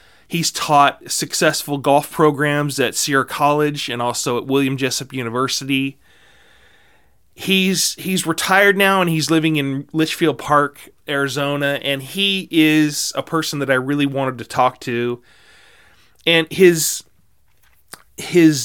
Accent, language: American, English